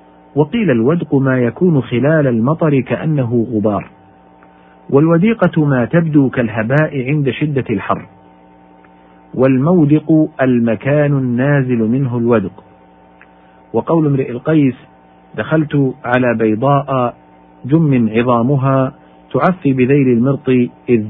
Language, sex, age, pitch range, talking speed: Arabic, male, 50-69, 100-140 Hz, 90 wpm